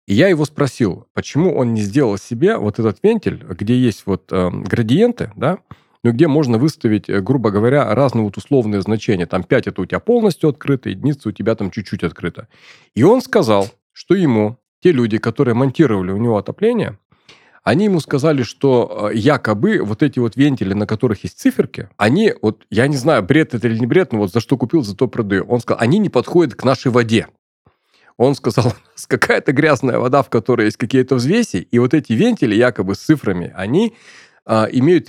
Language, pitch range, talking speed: Russian, 105-140 Hz, 195 wpm